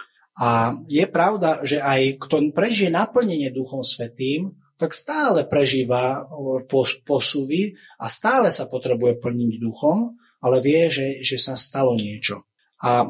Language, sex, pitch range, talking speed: Slovak, male, 125-170 Hz, 135 wpm